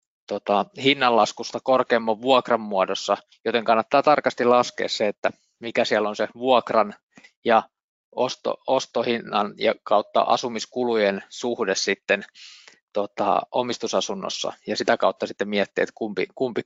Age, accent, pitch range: 20-39, native, 115-130 Hz